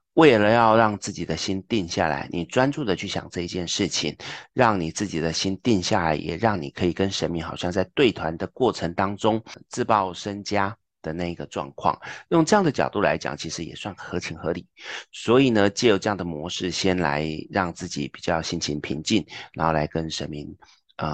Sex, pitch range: male, 85-110 Hz